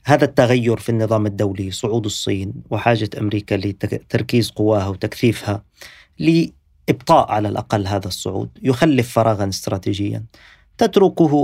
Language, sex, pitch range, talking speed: Arabic, male, 105-135 Hz, 110 wpm